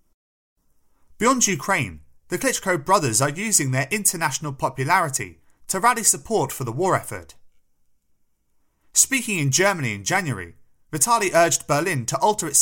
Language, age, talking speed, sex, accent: English, 30-49, 135 wpm, male, British